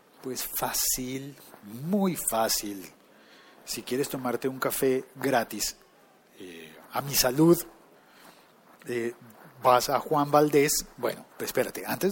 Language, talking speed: Spanish, 110 wpm